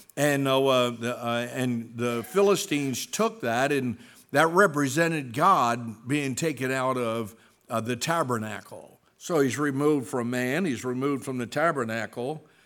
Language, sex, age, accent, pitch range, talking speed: English, male, 60-79, American, 120-155 Hz, 145 wpm